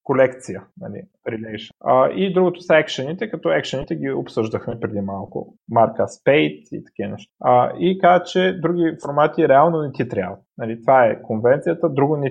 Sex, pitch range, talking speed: male, 115-155 Hz, 160 wpm